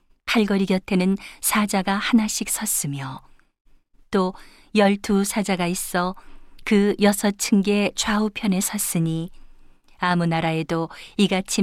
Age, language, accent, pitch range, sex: 40-59, Korean, native, 175-205 Hz, female